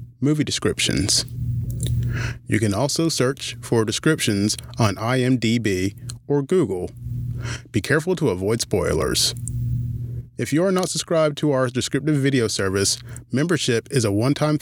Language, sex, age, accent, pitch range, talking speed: English, male, 30-49, American, 115-135 Hz, 125 wpm